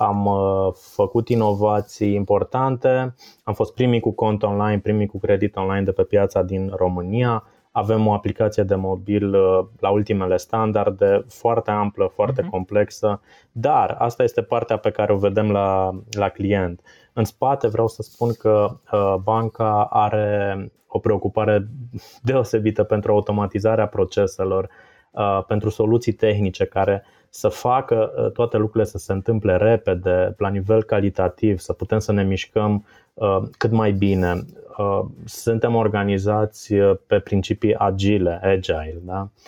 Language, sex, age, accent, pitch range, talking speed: Romanian, male, 20-39, native, 100-110 Hz, 130 wpm